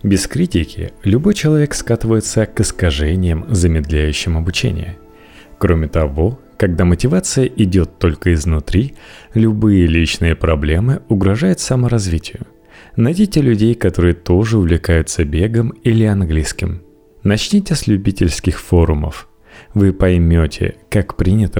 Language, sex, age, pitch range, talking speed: Russian, male, 30-49, 85-115 Hz, 105 wpm